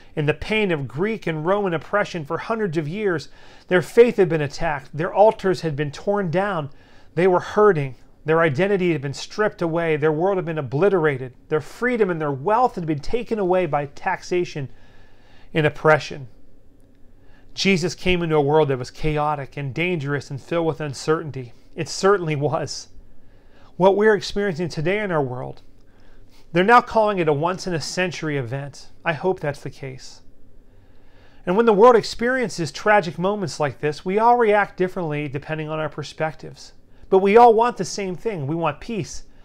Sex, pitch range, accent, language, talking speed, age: male, 140-195 Hz, American, English, 175 wpm, 40-59